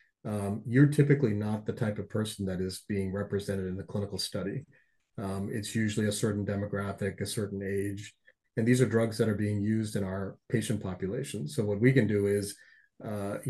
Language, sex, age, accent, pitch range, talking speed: English, male, 30-49, American, 100-115 Hz, 195 wpm